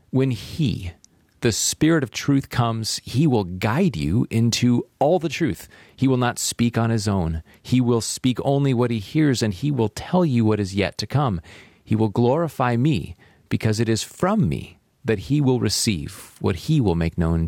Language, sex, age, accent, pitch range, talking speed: English, male, 40-59, American, 105-130 Hz, 195 wpm